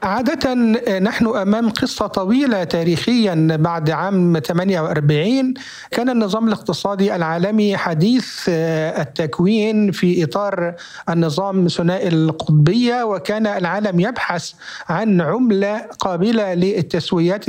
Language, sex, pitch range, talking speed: Arabic, male, 180-225 Hz, 95 wpm